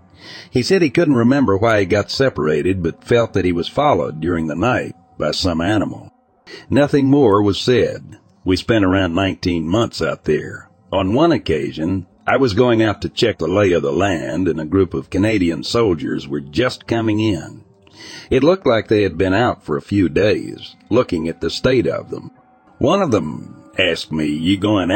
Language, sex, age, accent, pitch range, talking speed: English, male, 60-79, American, 85-115 Hz, 190 wpm